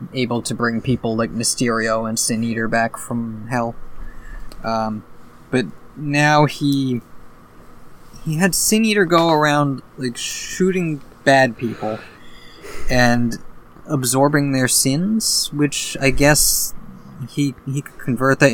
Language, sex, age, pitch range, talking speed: English, male, 20-39, 115-140 Hz, 125 wpm